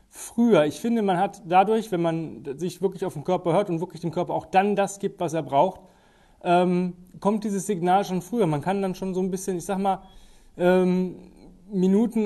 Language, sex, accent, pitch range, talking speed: German, male, German, 145-185 Hz, 210 wpm